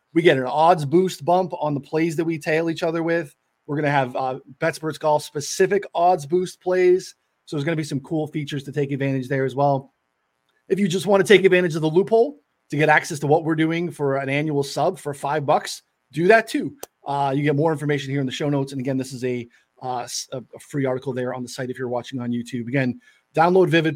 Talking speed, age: 245 wpm, 20-39